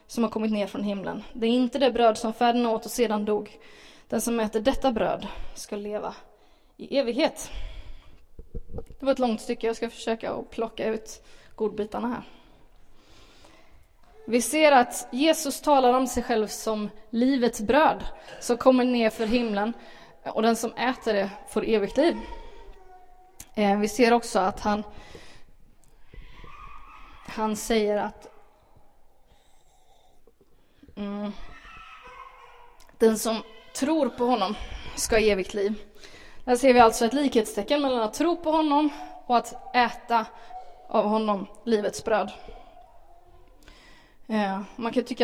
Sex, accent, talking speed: female, native, 135 wpm